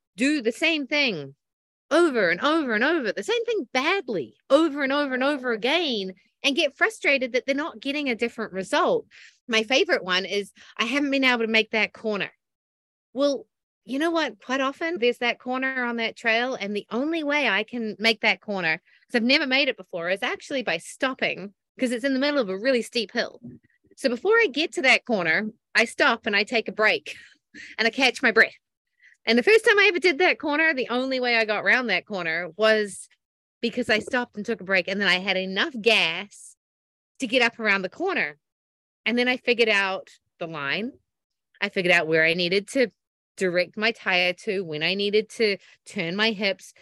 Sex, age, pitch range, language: female, 30-49, 190-270 Hz, English